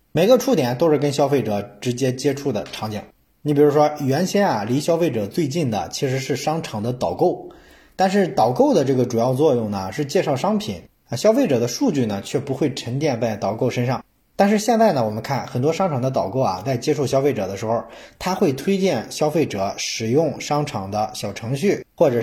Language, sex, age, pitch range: Chinese, male, 20-39, 120-155 Hz